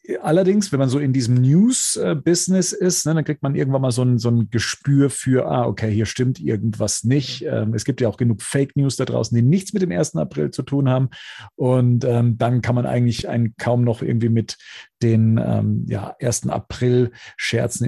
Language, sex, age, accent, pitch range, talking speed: German, male, 50-69, German, 115-140 Hz, 180 wpm